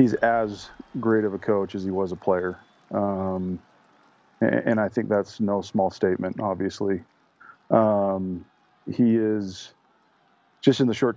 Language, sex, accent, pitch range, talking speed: English, male, American, 100-110 Hz, 150 wpm